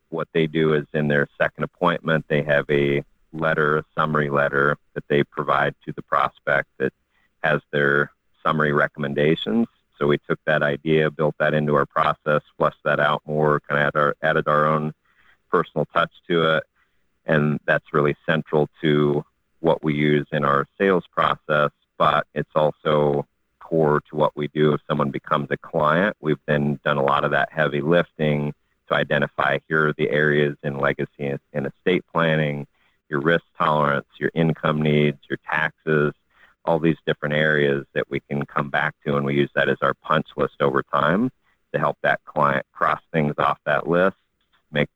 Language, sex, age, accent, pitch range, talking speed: English, male, 40-59, American, 70-80 Hz, 180 wpm